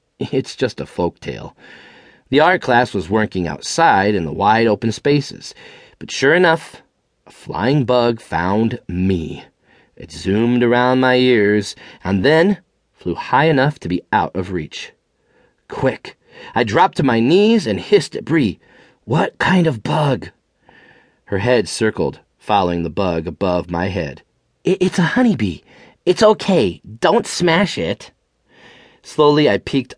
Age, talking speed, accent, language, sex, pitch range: 30-49, 145 wpm, American, English, male, 100-160 Hz